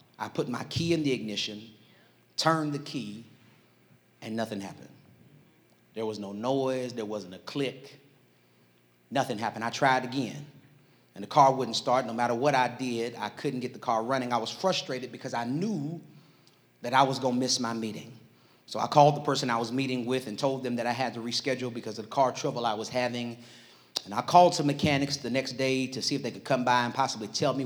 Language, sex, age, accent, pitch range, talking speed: English, male, 30-49, American, 115-135 Hz, 215 wpm